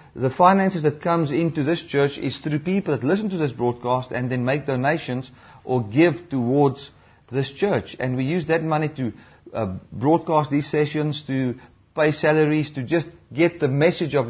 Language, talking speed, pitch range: English, 180 wpm, 130-170 Hz